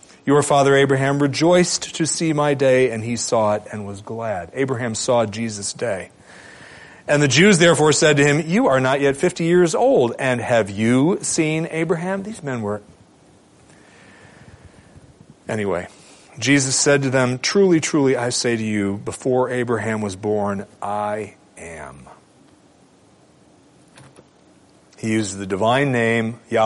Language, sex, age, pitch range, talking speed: English, male, 40-59, 100-135 Hz, 145 wpm